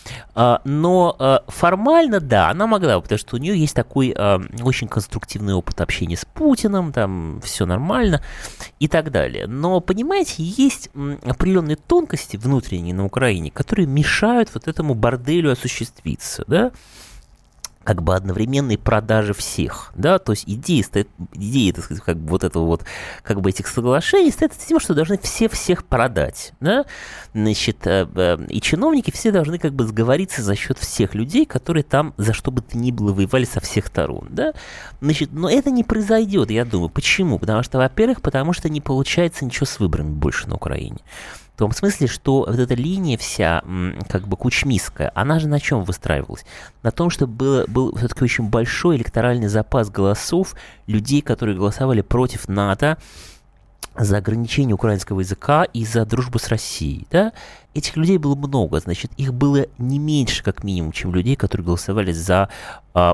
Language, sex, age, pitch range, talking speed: Russian, male, 20-39, 100-150 Hz, 165 wpm